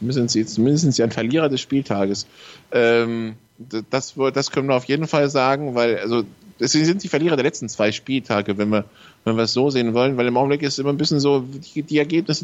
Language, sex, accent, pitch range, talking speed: German, male, German, 130-165 Hz, 220 wpm